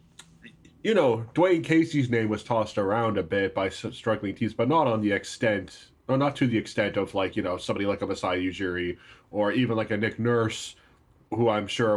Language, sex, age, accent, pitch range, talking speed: English, male, 20-39, American, 105-130 Hz, 210 wpm